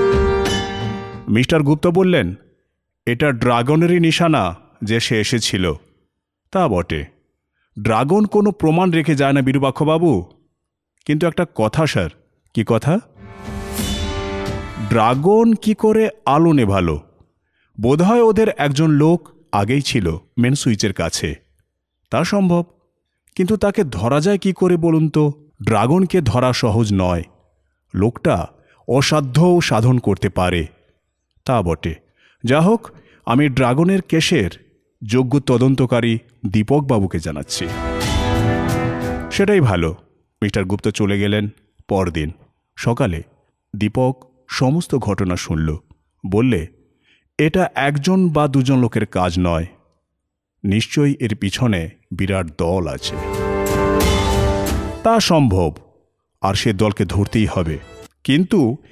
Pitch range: 95-155 Hz